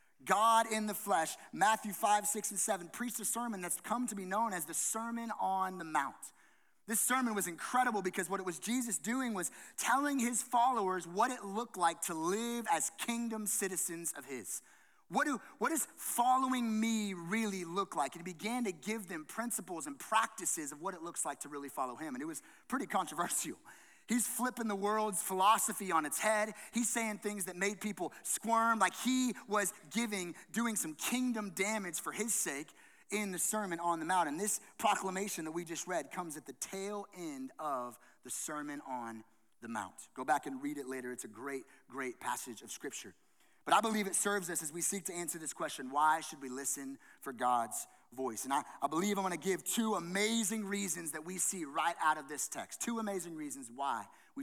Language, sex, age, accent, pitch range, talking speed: English, male, 30-49, American, 170-230 Hz, 205 wpm